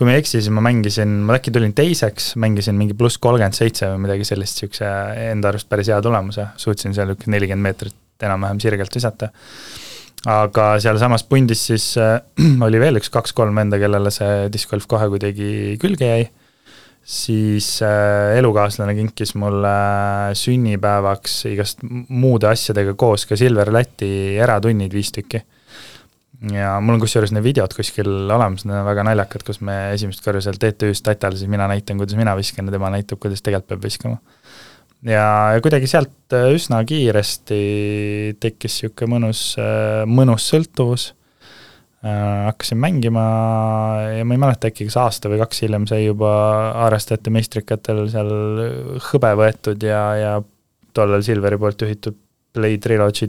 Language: English